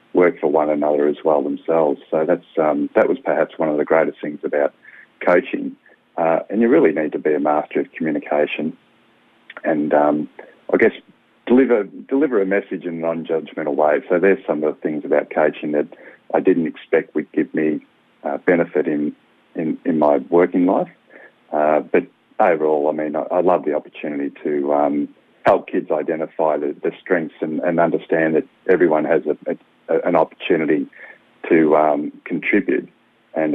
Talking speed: 175 wpm